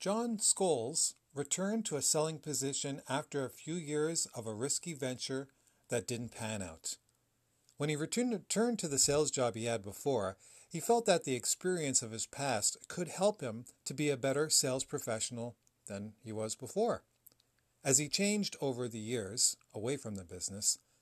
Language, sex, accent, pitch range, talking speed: English, male, American, 115-150 Hz, 170 wpm